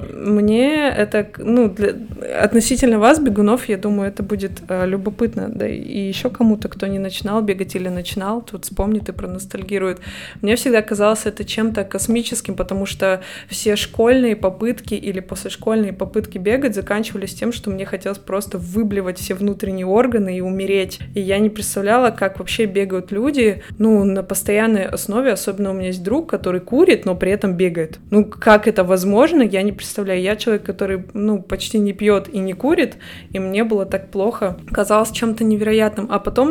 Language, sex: Russian, female